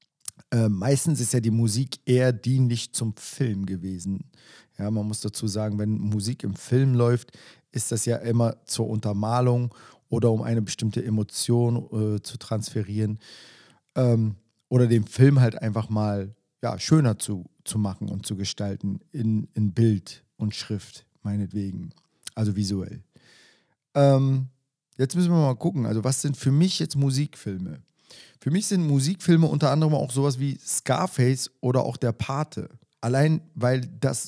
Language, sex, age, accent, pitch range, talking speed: German, male, 40-59, German, 110-135 Hz, 160 wpm